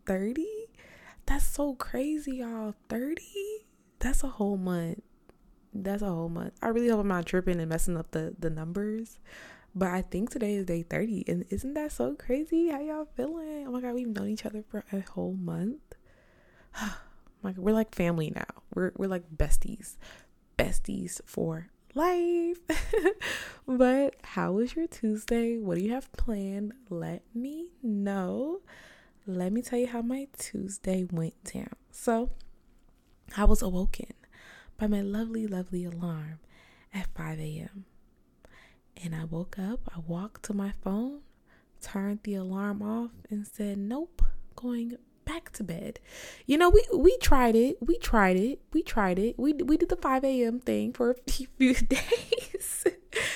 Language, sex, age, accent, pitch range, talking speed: English, female, 20-39, American, 190-265 Hz, 155 wpm